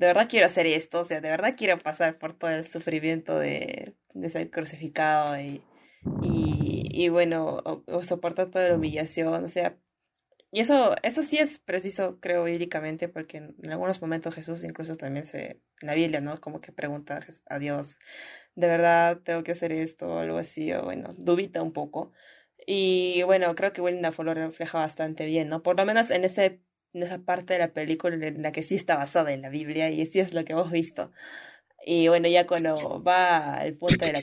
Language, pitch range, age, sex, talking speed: Spanish, 155-175 Hz, 20-39, female, 205 wpm